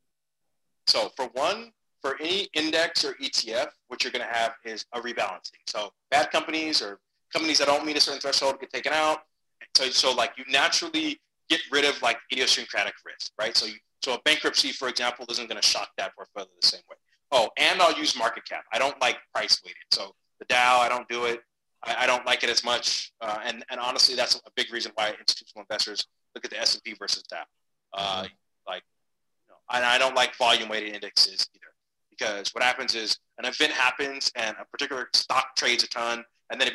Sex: male